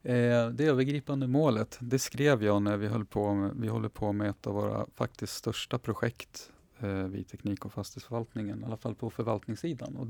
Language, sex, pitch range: English, male, 100-125 Hz